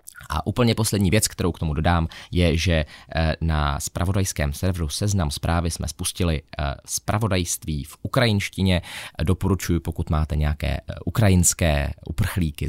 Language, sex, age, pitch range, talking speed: Czech, male, 20-39, 85-120 Hz, 125 wpm